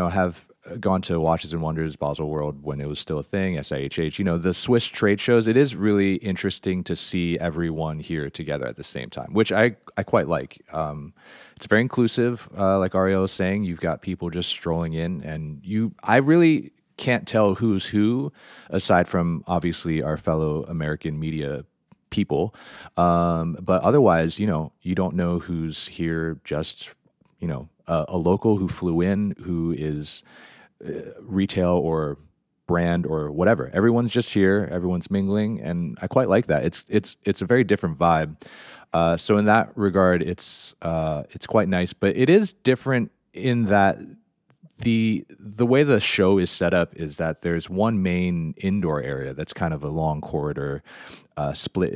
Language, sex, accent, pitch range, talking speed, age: English, male, American, 80-100 Hz, 175 wpm, 30-49